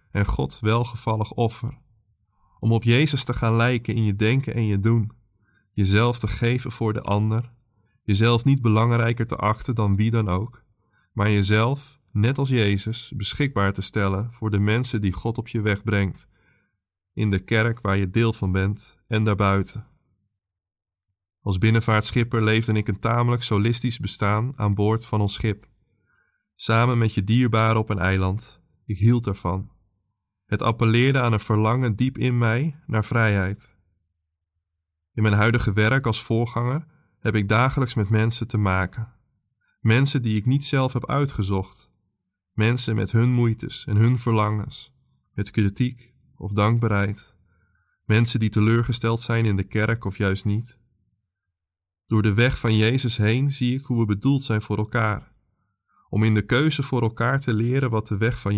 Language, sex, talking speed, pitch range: Dutch, male, 160 wpm, 100-120 Hz